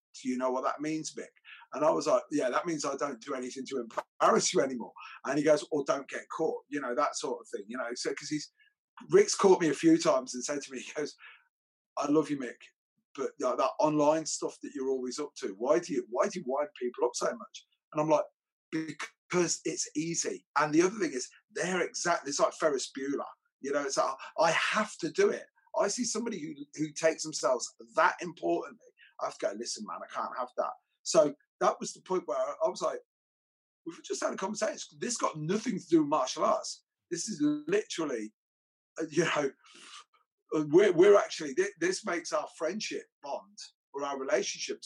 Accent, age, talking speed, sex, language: British, 30-49, 215 wpm, male, English